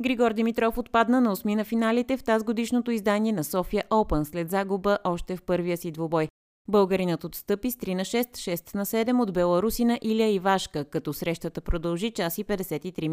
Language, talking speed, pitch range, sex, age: Bulgarian, 180 wpm, 170-225 Hz, female, 20-39